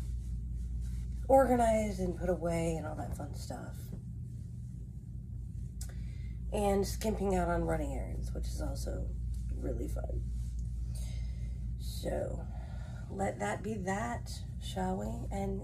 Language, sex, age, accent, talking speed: English, female, 30-49, American, 105 wpm